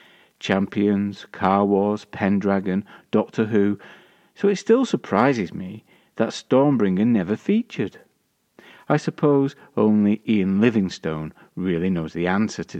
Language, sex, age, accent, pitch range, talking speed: English, male, 40-59, British, 95-140 Hz, 115 wpm